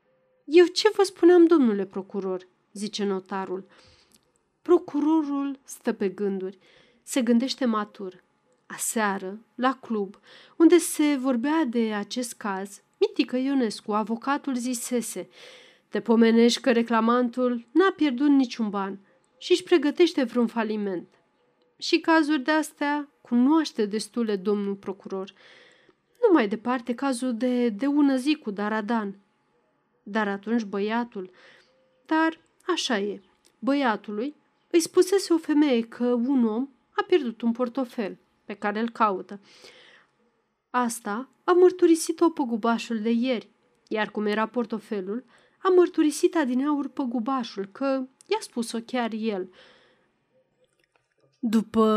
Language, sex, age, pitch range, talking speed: Romanian, female, 30-49, 215-295 Hz, 120 wpm